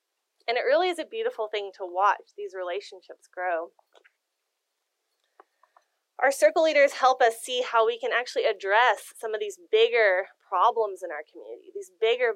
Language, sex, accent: English, female, American